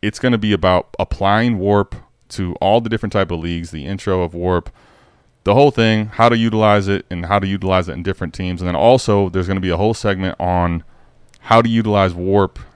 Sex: male